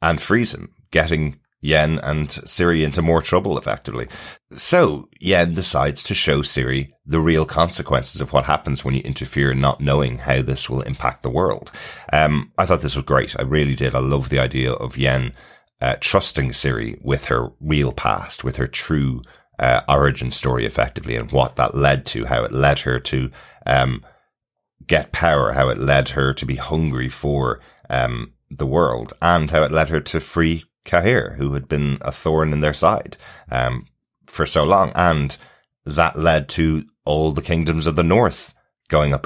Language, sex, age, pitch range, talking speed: English, male, 30-49, 70-80 Hz, 180 wpm